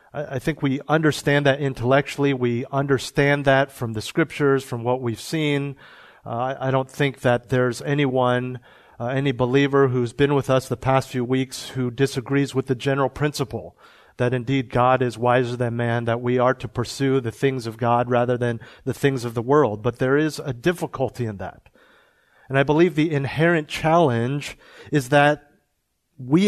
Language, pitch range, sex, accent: English, 125-150 Hz, male, American